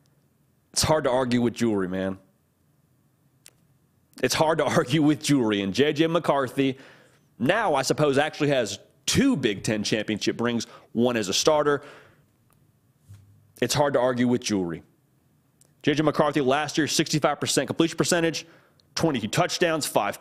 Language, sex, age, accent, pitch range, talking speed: English, male, 30-49, American, 125-165 Hz, 135 wpm